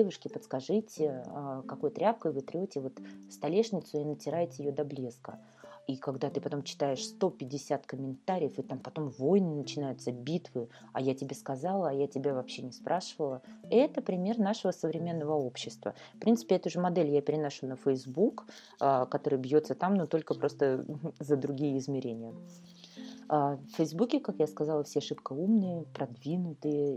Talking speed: 155 wpm